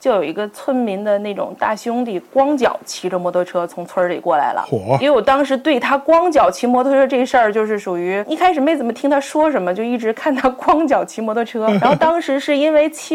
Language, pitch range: Chinese, 195-265 Hz